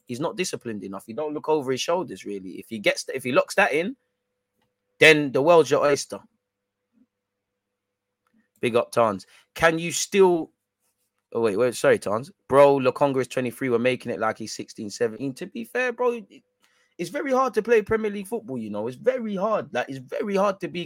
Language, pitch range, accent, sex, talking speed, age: English, 135-185 Hz, British, male, 215 wpm, 20-39